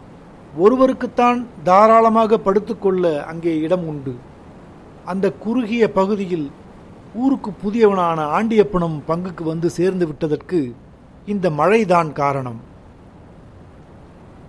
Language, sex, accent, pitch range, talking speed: Tamil, male, native, 155-210 Hz, 80 wpm